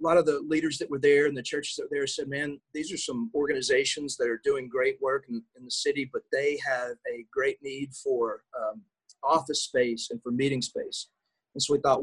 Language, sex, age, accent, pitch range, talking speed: English, male, 40-59, American, 125-160 Hz, 235 wpm